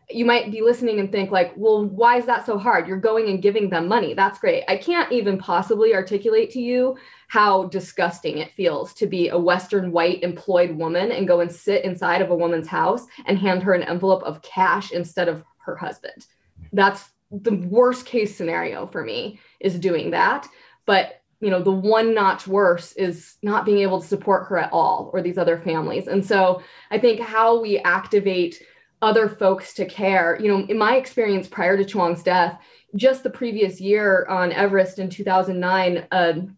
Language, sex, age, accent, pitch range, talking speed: English, female, 20-39, American, 180-220 Hz, 190 wpm